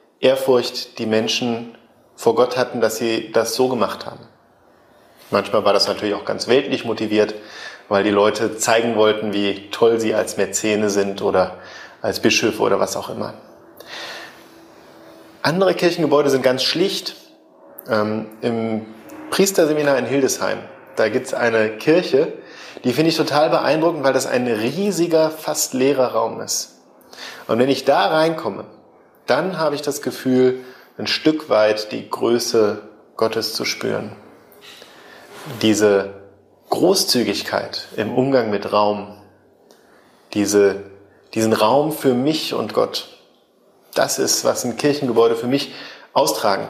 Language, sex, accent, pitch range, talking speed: German, male, German, 110-145 Hz, 135 wpm